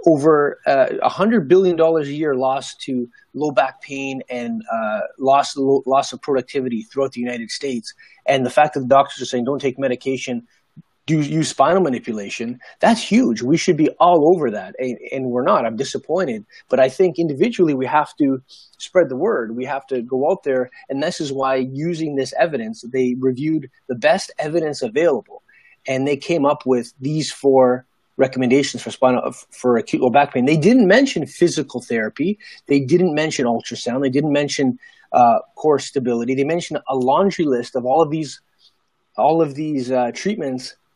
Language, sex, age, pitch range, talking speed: English, male, 30-49, 125-160 Hz, 180 wpm